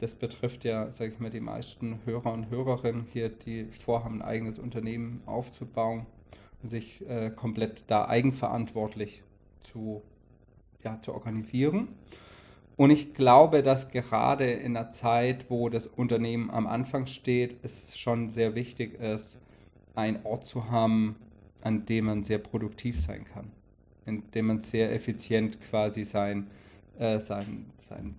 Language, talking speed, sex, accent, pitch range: German, 145 wpm, male, German, 105-125 Hz